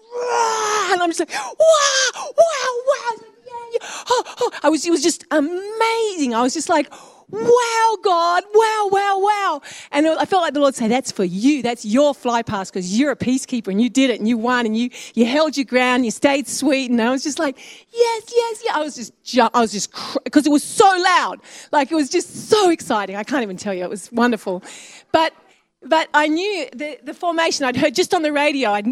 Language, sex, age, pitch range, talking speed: English, female, 40-59, 235-325 Hz, 235 wpm